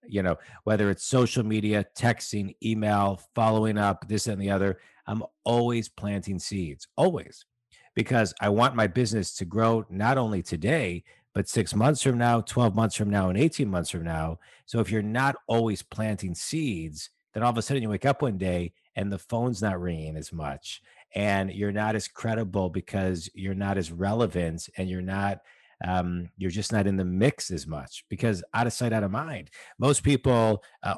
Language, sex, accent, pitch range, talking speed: English, male, American, 90-110 Hz, 190 wpm